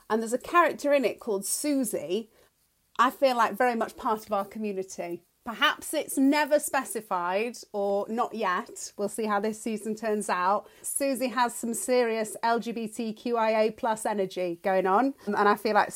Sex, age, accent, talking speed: female, 30-49, British, 165 wpm